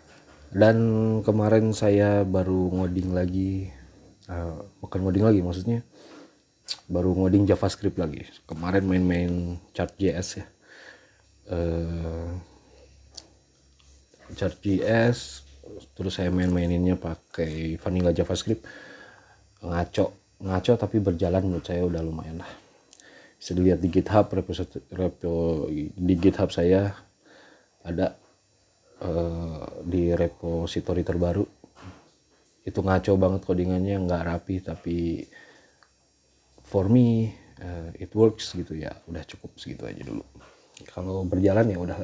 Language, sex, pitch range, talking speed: Indonesian, male, 85-100 Hz, 100 wpm